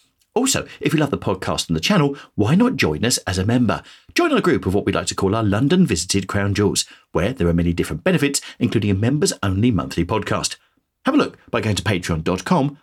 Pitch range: 90-130 Hz